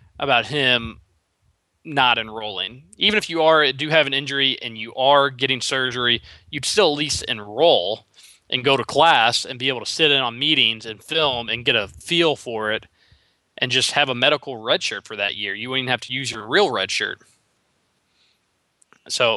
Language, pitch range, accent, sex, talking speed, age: English, 110-140 Hz, American, male, 190 wpm, 20-39